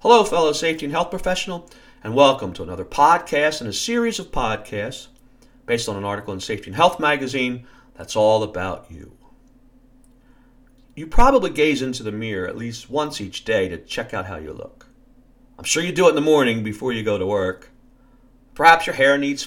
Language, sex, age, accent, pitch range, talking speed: English, male, 50-69, American, 115-150 Hz, 195 wpm